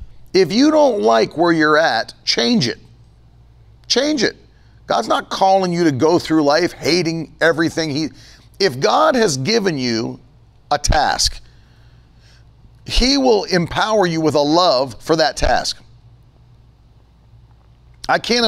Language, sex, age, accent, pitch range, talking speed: English, male, 50-69, American, 135-200 Hz, 135 wpm